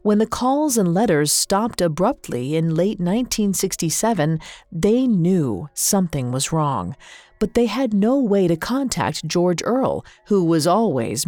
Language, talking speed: English, 145 wpm